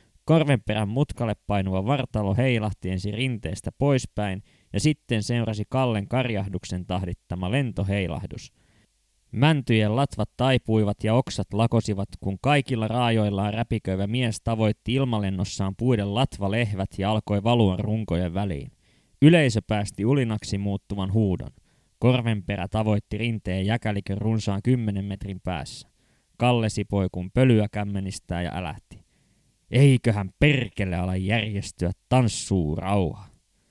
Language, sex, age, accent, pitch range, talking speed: Finnish, male, 20-39, native, 95-120 Hz, 110 wpm